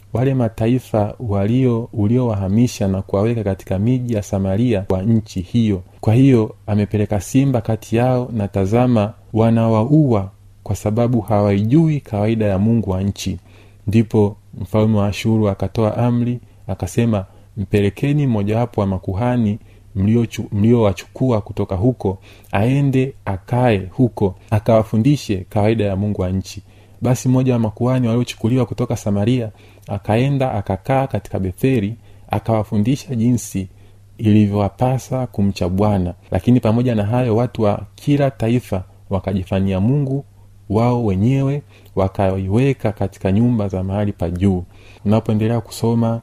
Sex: male